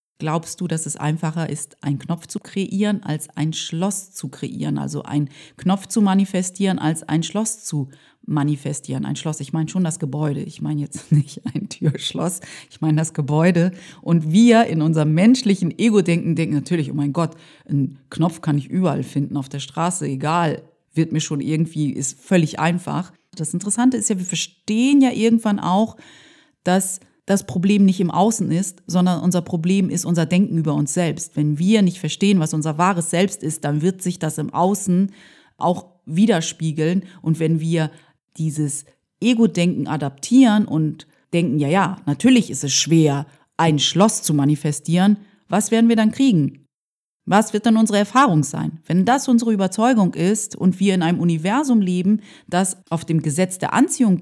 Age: 30-49